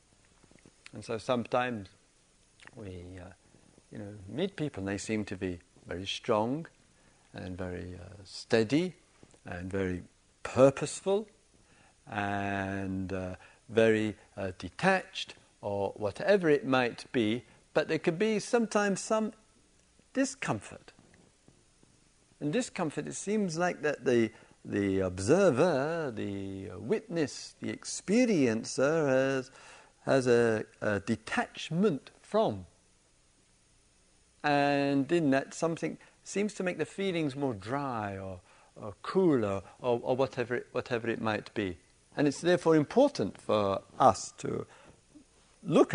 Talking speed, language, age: 115 wpm, English, 50-69